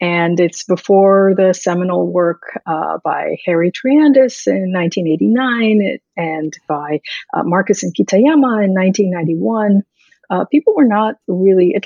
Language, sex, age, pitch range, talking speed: English, female, 50-69, 170-235 Hz, 125 wpm